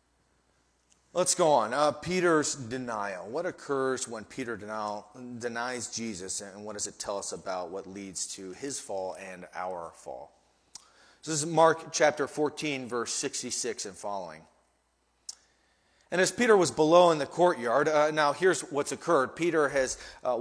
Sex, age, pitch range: male, 30-49, 125-160 Hz